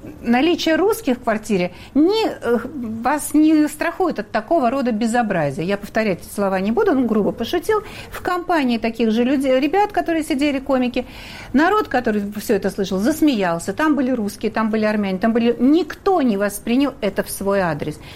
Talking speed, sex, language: 170 wpm, female, Russian